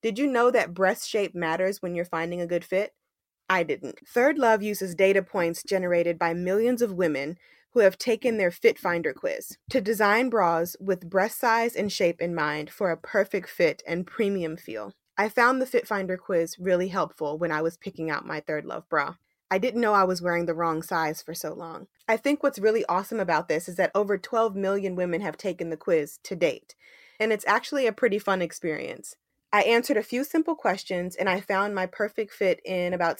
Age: 20-39